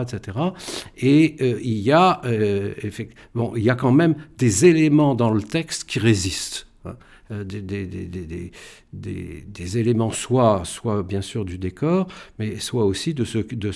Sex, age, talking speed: male, 60-79, 155 wpm